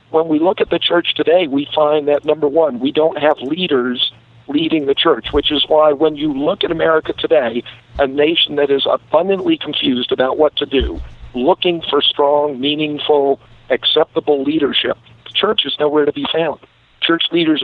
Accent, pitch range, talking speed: American, 140-165 Hz, 180 wpm